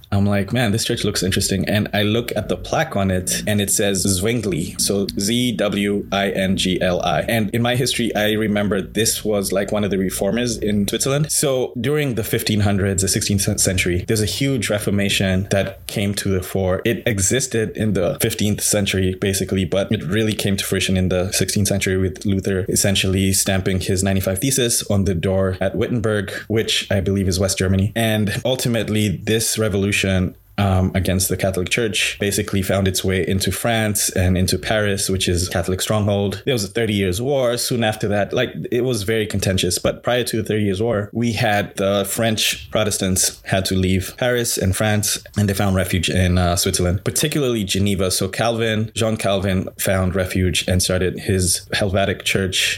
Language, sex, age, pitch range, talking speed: English, male, 20-39, 95-110 Hz, 185 wpm